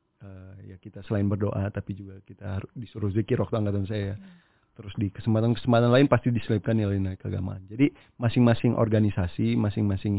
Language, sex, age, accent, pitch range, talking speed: Indonesian, male, 30-49, native, 100-115 Hz, 155 wpm